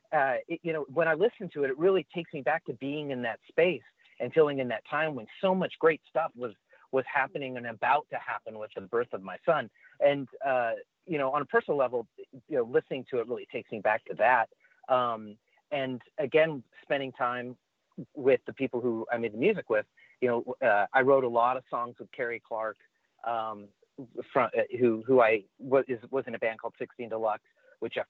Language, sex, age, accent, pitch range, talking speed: English, male, 40-59, American, 115-150 Hz, 220 wpm